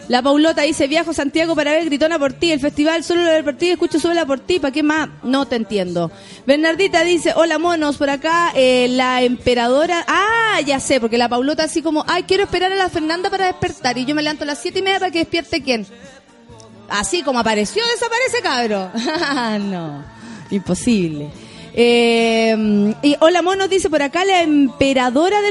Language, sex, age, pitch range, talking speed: Spanish, female, 30-49, 245-325 Hz, 195 wpm